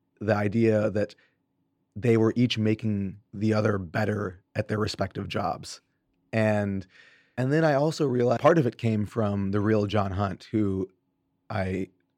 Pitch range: 100-115 Hz